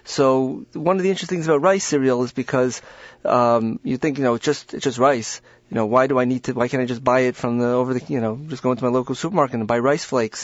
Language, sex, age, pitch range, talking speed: English, male, 30-49, 125-150 Hz, 285 wpm